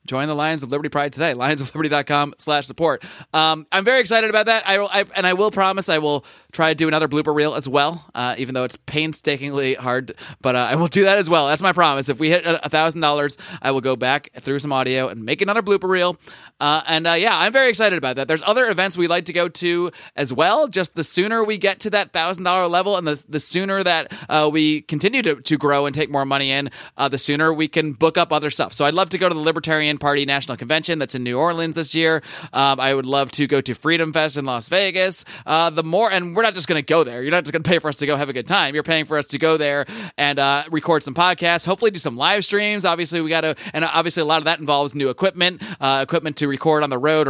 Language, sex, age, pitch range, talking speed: English, male, 30-49, 145-175 Hz, 265 wpm